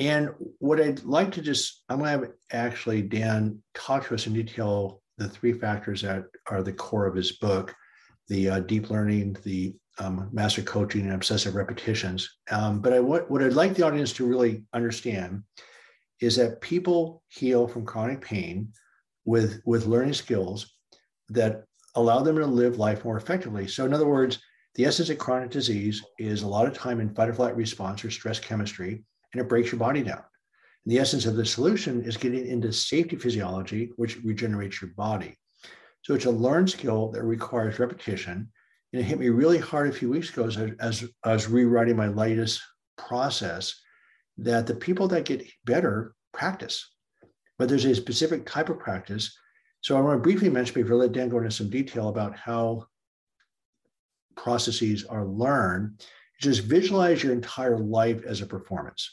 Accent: American